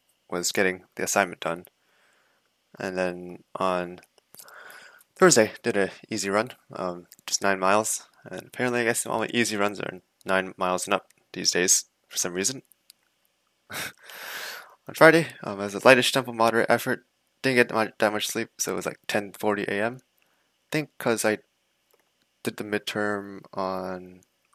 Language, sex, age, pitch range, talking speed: English, male, 20-39, 95-115 Hz, 160 wpm